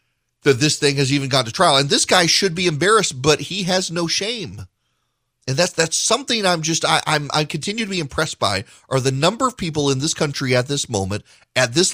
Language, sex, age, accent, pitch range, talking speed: English, male, 40-59, American, 100-150 Hz, 230 wpm